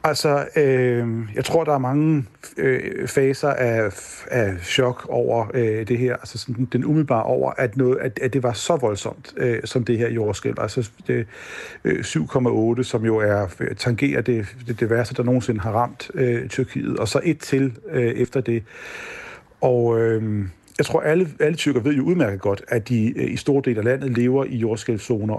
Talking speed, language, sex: 190 wpm, Danish, male